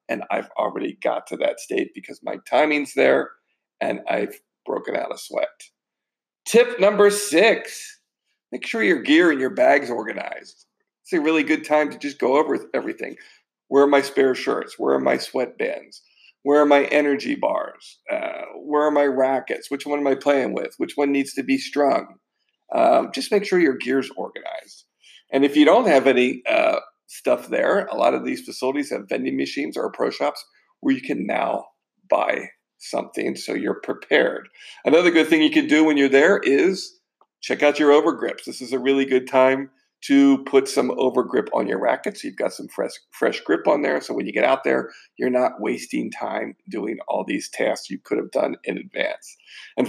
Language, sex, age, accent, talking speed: English, male, 40-59, American, 195 wpm